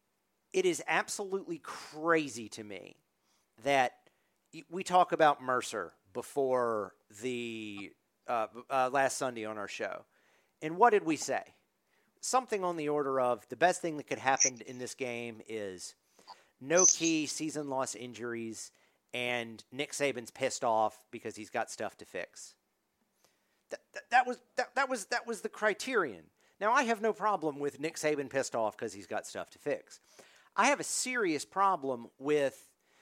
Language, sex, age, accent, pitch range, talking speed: English, male, 40-59, American, 125-180 Hz, 150 wpm